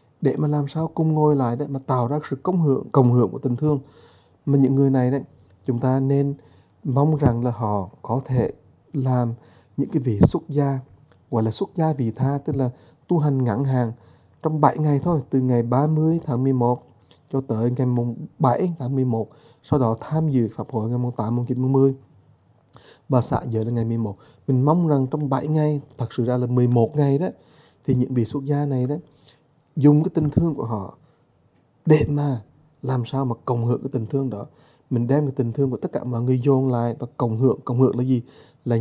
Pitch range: 120-145 Hz